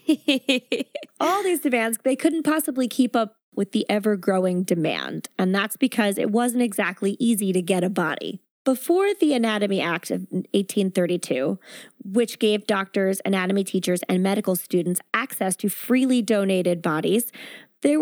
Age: 20-39